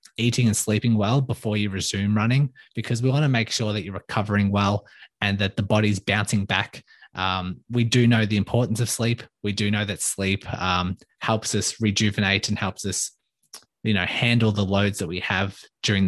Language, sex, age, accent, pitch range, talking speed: English, male, 20-39, Australian, 100-120 Hz, 200 wpm